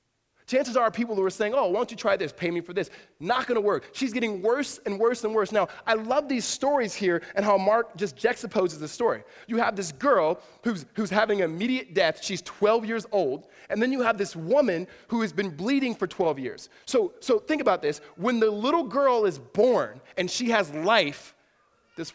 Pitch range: 150-225 Hz